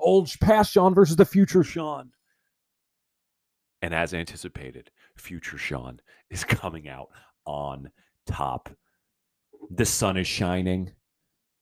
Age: 30-49